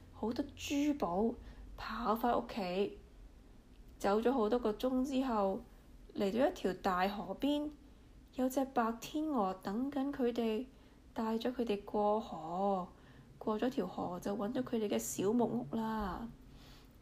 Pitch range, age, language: 210-275 Hz, 20-39, Chinese